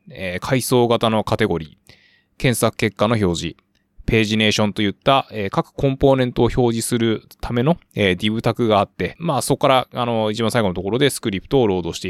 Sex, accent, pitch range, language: male, native, 100-125 Hz, Japanese